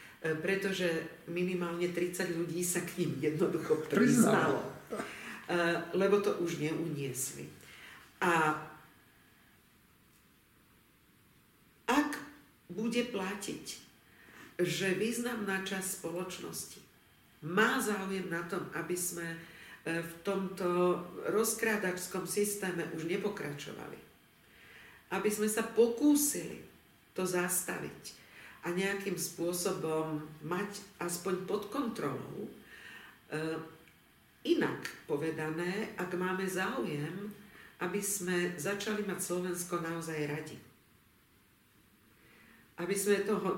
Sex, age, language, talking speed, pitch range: female, 50-69, Slovak, 85 wpm, 165-195 Hz